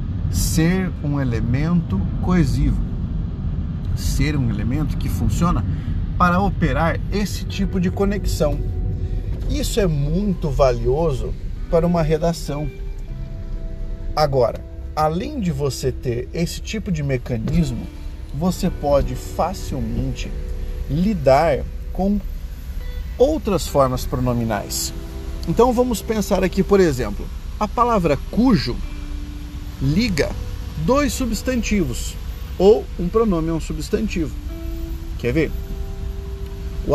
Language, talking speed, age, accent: Portuguese, 95 wpm, 50-69, Brazilian